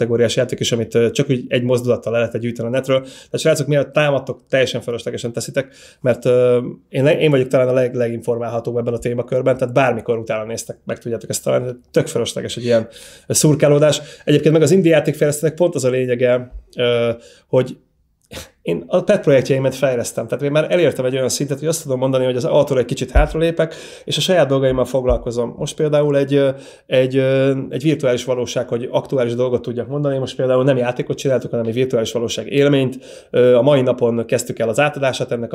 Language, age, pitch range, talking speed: Hungarian, 30-49, 120-135 Hz, 190 wpm